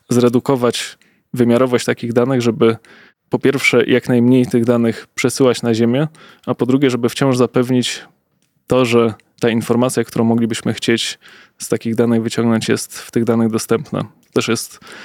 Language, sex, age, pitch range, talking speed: Polish, male, 20-39, 115-125 Hz, 155 wpm